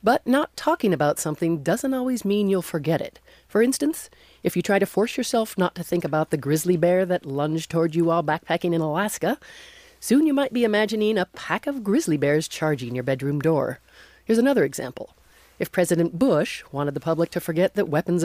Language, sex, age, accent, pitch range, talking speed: English, female, 40-59, American, 150-215 Hz, 200 wpm